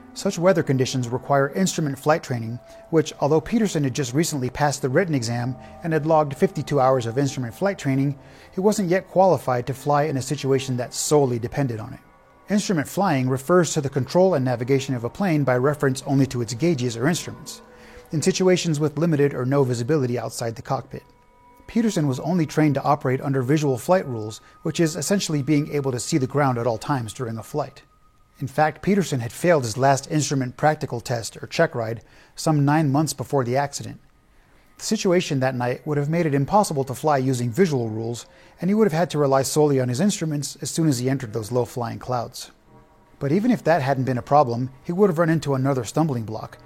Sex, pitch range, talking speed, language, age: male, 130-160 Hz, 205 wpm, English, 30-49